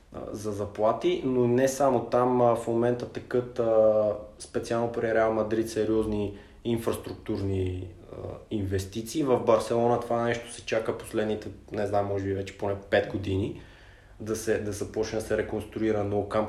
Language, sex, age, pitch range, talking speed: Bulgarian, male, 20-39, 105-135 Hz, 145 wpm